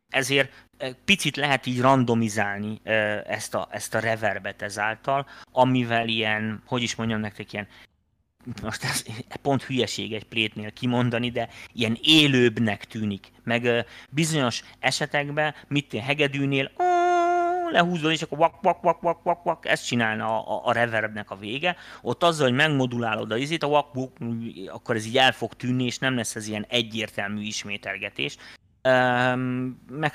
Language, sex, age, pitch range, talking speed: Hungarian, male, 30-49, 105-130 Hz, 145 wpm